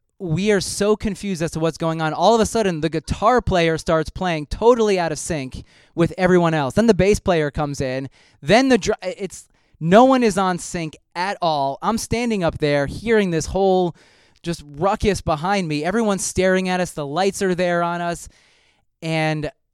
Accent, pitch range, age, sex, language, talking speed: American, 145-185 Hz, 20-39, male, English, 190 wpm